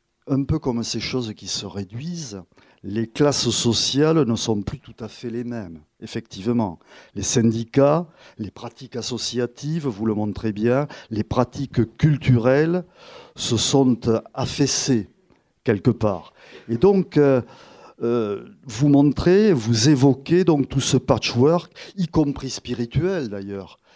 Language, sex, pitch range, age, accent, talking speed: French, male, 115-145 Hz, 50-69, French, 130 wpm